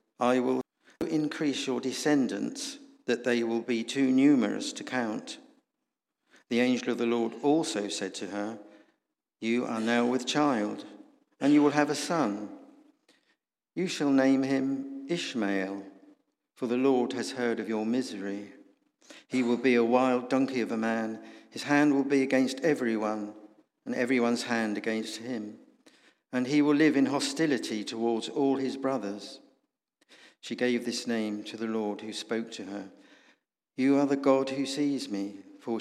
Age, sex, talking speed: 50-69, male, 160 wpm